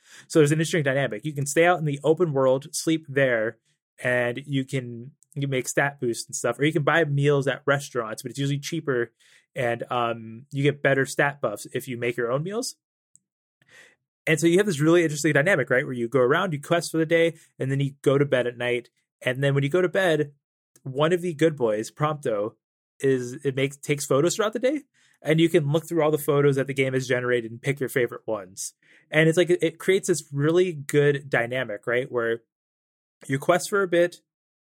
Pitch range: 130-155 Hz